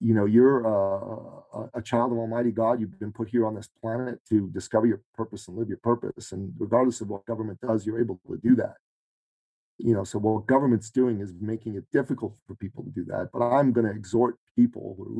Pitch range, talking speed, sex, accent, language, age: 110-135 Hz, 230 wpm, male, American, English, 40-59